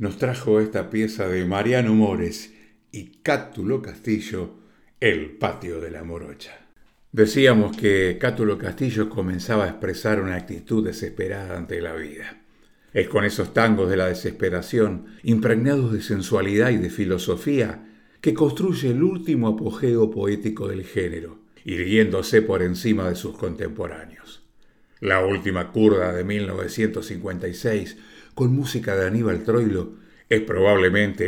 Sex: male